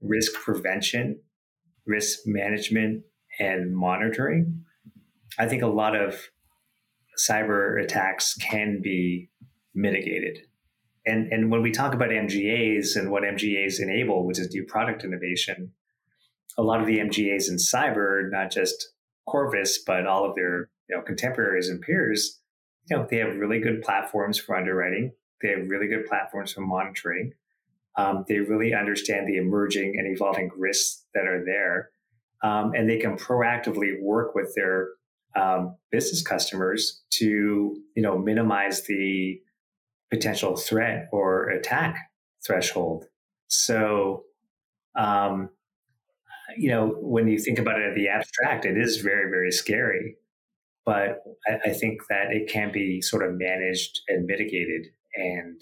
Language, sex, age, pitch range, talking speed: English, male, 30-49, 95-110 Hz, 140 wpm